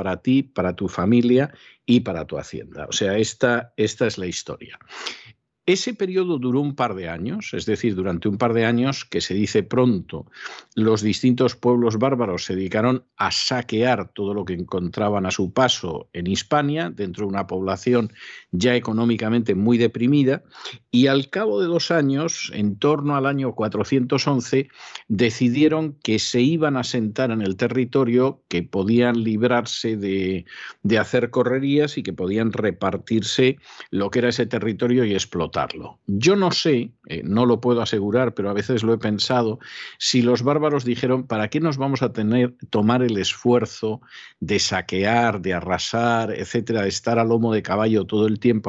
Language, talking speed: Spanish, 170 wpm